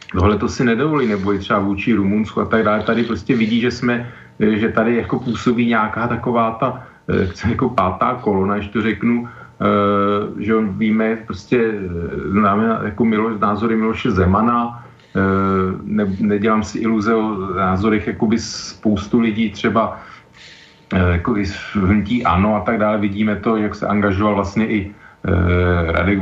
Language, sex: Slovak, male